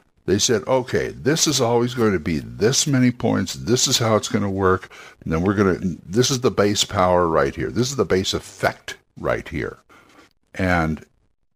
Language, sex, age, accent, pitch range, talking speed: English, male, 60-79, American, 95-120 Hz, 200 wpm